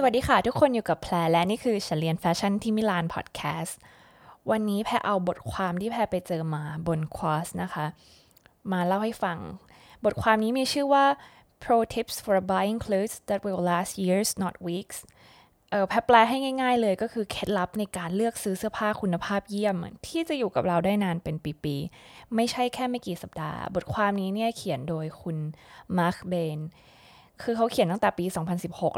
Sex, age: female, 20-39